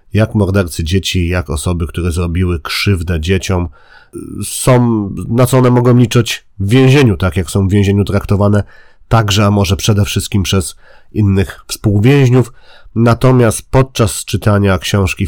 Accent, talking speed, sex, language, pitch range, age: native, 140 wpm, male, Polish, 90-115 Hz, 40-59